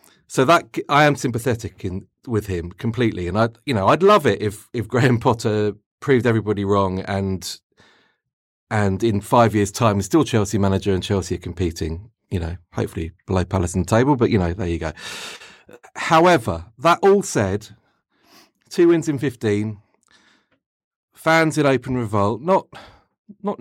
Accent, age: British, 40-59